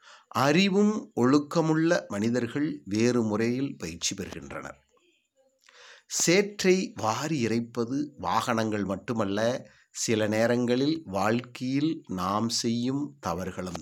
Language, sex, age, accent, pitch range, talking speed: English, male, 60-79, Indian, 105-150 Hz, 75 wpm